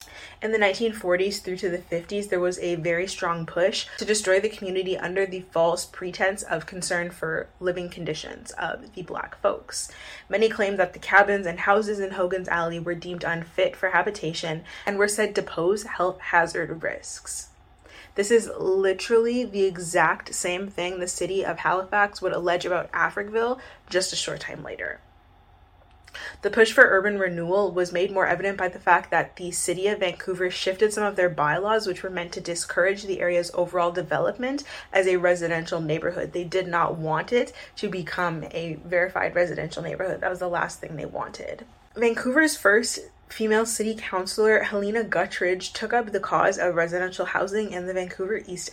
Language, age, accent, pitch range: English, 20-39, American, 175-200 Hz